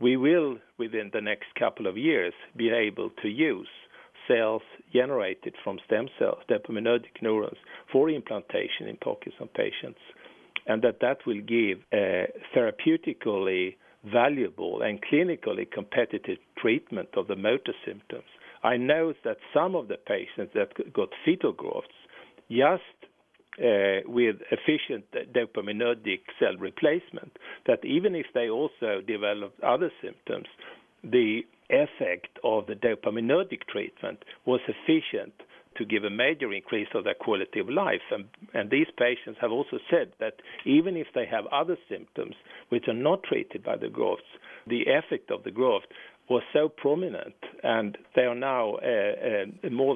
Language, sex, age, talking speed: English, male, 50-69, 145 wpm